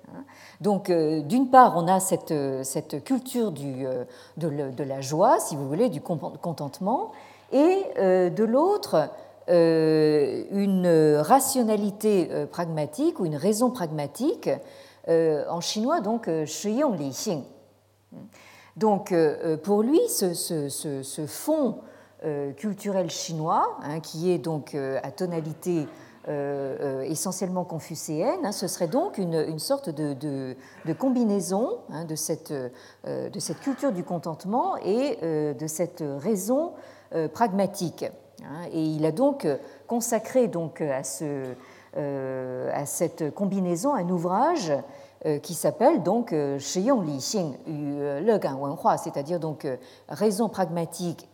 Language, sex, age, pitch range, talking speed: French, female, 50-69, 150-210 Hz, 130 wpm